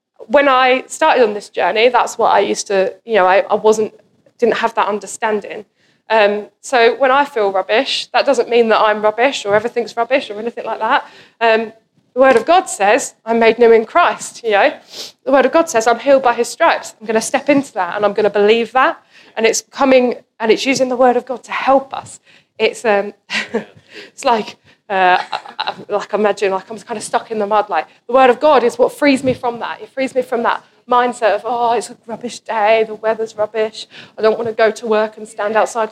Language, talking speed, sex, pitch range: English, 235 wpm, female, 215-265 Hz